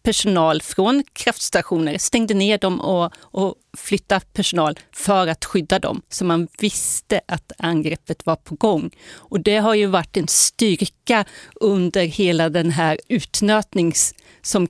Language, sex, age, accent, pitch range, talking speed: Swedish, female, 40-59, native, 175-215 Hz, 145 wpm